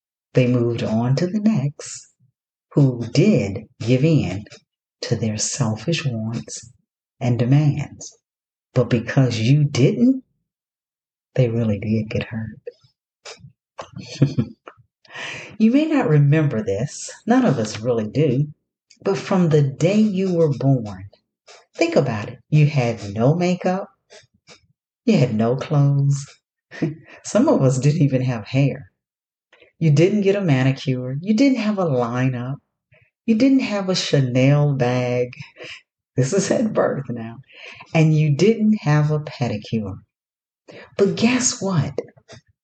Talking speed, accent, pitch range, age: 125 wpm, American, 125-165 Hz, 40-59